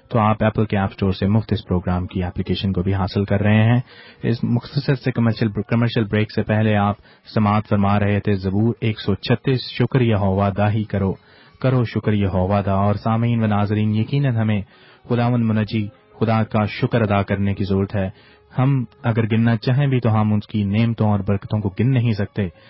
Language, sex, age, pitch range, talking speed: English, male, 30-49, 100-120 Hz, 185 wpm